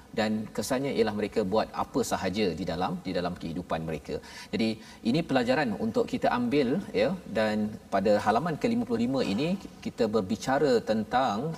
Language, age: Malayalam, 40-59